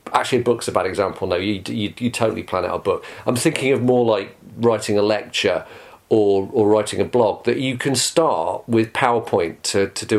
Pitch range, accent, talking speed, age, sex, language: 105-130 Hz, British, 220 wpm, 40-59, male, English